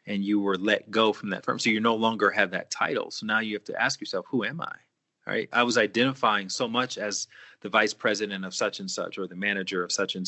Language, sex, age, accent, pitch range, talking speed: English, male, 30-49, American, 100-120 Hz, 270 wpm